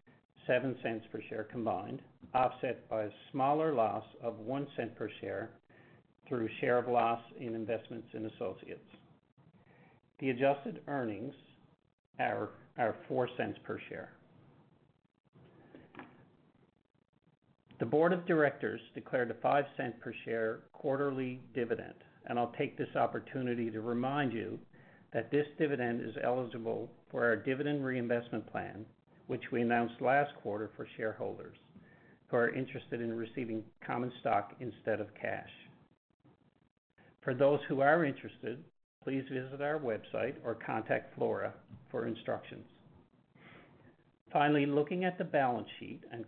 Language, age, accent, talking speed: English, 50-69, American, 130 wpm